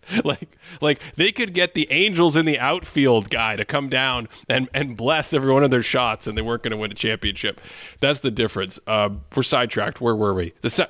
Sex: male